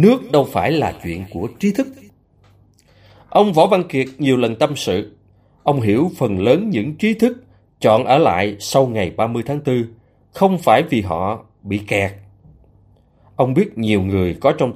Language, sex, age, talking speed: Vietnamese, male, 20-39, 175 wpm